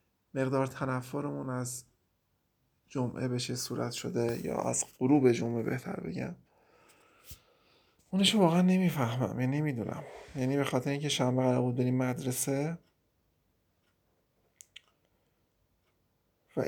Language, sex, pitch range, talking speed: Persian, male, 125-150 Hz, 100 wpm